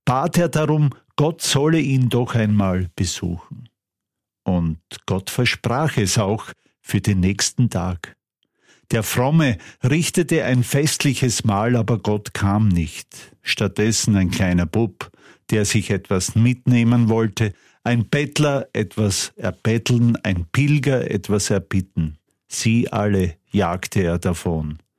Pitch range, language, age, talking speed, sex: 100-130 Hz, German, 50-69, 120 wpm, male